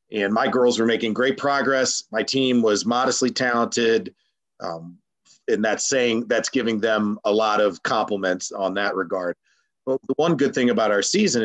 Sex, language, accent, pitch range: male, English, American, 100-135 Hz